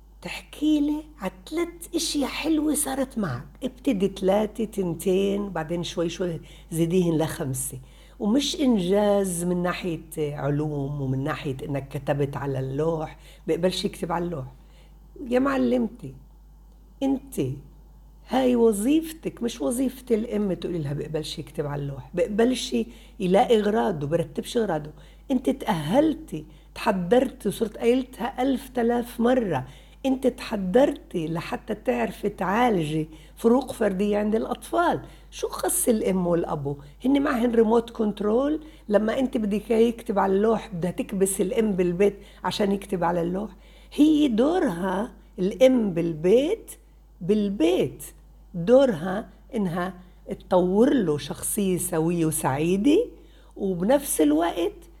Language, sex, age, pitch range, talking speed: Arabic, female, 60-79, 170-245 Hz, 110 wpm